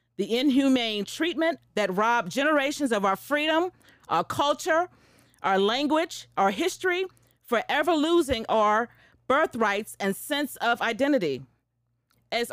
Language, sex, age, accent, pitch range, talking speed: English, female, 40-59, American, 210-315 Hz, 115 wpm